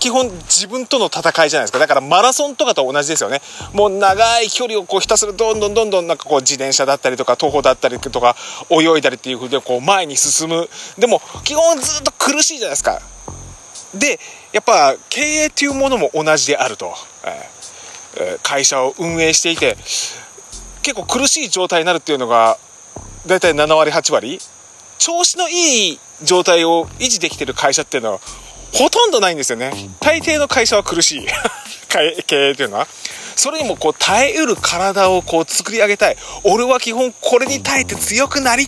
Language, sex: Japanese, male